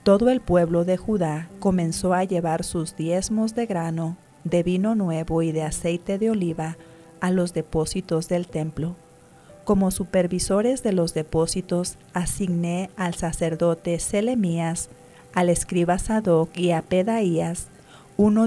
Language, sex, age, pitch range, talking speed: English, female, 40-59, 165-195 Hz, 135 wpm